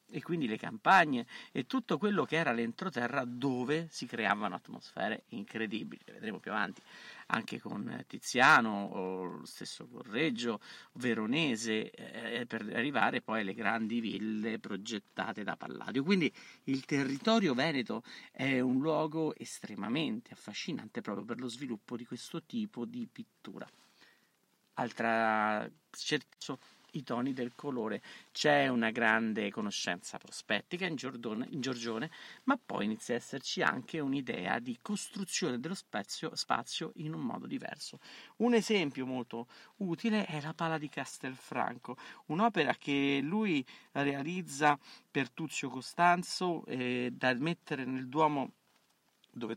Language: Italian